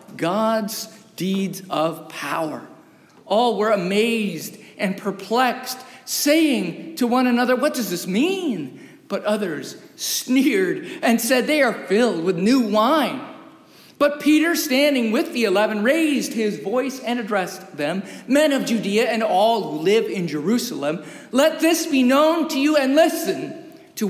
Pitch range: 210-290 Hz